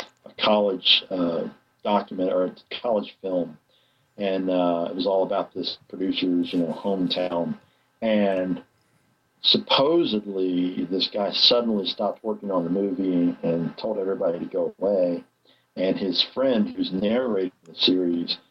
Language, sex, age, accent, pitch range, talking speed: English, male, 50-69, American, 90-120 Hz, 135 wpm